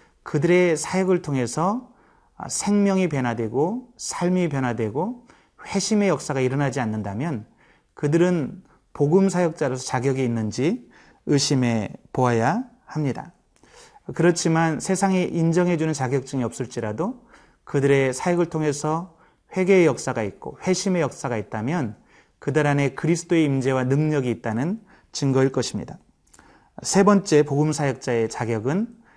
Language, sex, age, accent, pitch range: Korean, male, 30-49, native, 130-180 Hz